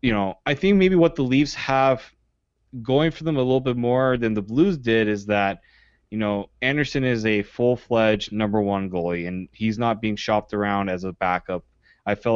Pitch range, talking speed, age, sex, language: 105-135 Hz, 205 wpm, 20-39, male, English